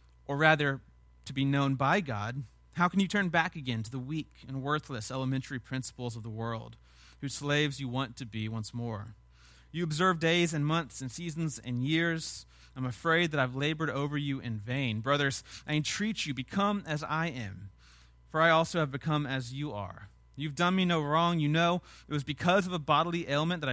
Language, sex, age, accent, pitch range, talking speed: English, male, 30-49, American, 120-160 Hz, 200 wpm